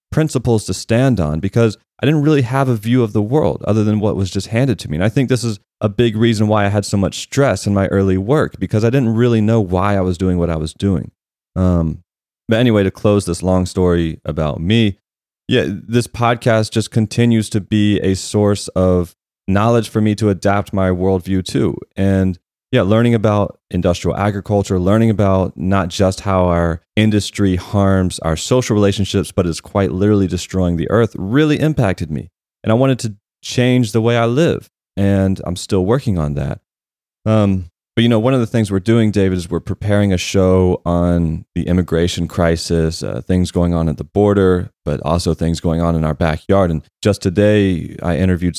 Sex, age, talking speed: male, 30-49, 200 wpm